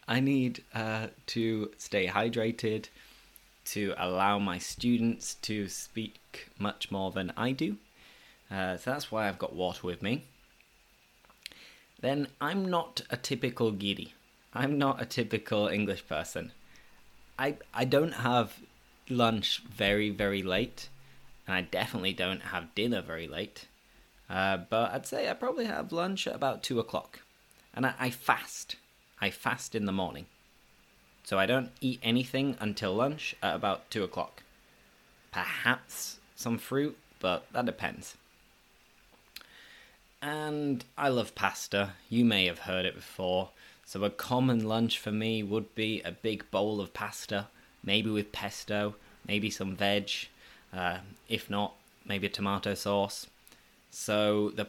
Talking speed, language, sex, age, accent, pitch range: 145 wpm, English, male, 20-39, British, 100-125 Hz